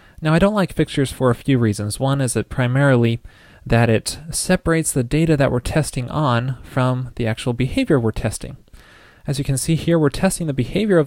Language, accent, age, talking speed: English, American, 20-39, 205 wpm